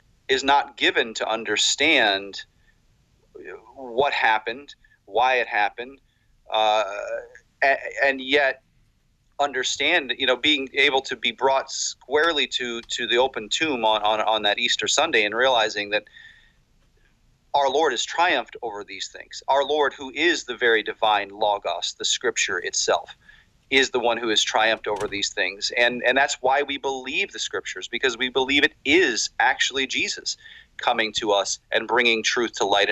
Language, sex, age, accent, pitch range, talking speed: English, male, 40-59, American, 115-140 Hz, 155 wpm